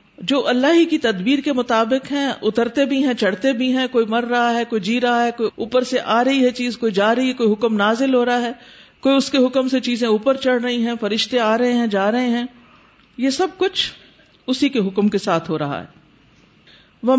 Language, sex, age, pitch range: Urdu, female, 50-69, 200-260 Hz